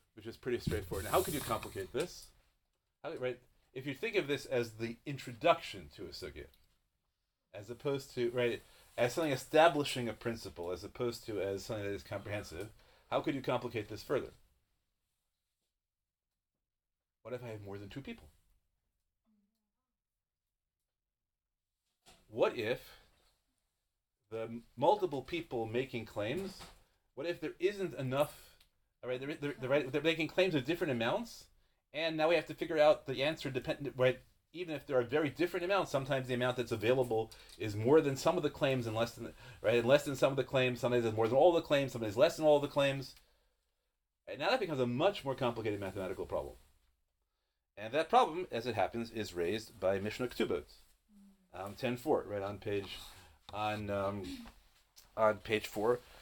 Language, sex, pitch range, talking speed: English, male, 100-145 Hz, 175 wpm